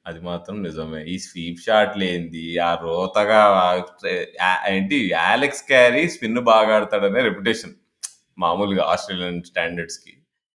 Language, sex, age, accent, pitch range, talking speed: Telugu, male, 20-39, native, 90-135 Hz, 115 wpm